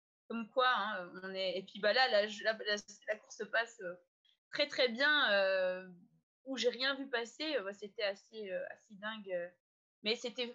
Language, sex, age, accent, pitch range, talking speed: French, female, 20-39, French, 205-275 Hz, 190 wpm